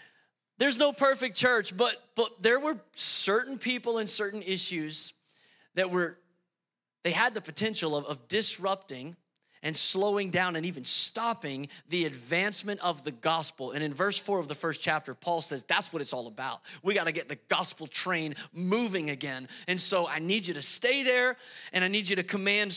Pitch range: 185-240 Hz